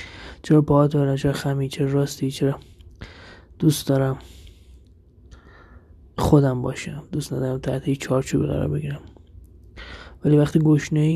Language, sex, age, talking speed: Persian, male, 20-39, 110 wpm